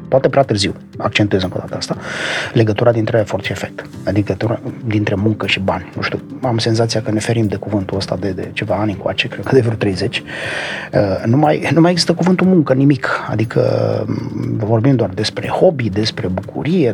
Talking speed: 190 wpm